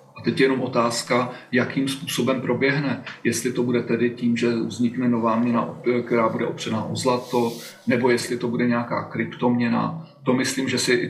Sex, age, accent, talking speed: male, 40-59, native, 180 wpm